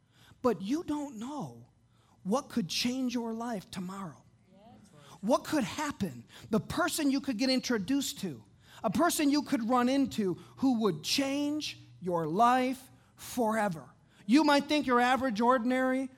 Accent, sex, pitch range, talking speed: American, male, 195-250 Hz, 140 wpm